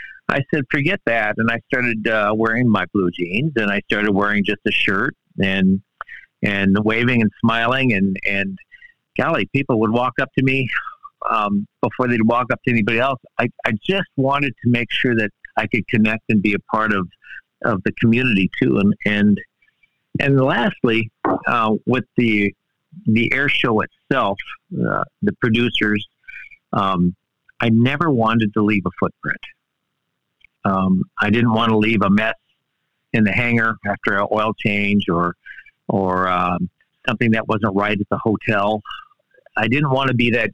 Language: English